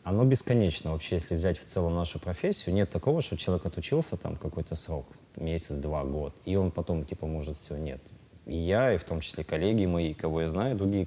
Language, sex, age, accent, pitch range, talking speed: Russian, male, 20-39, native, 85-100 Hz, 205 wpm